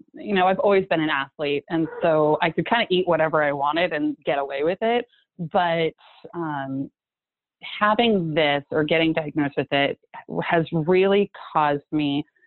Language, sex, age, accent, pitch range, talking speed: English, female, 30-49, American, 150-175 Hz, 170 wpm